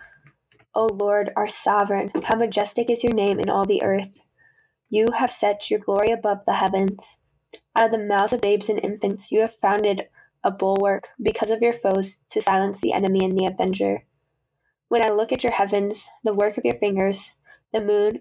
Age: 10-29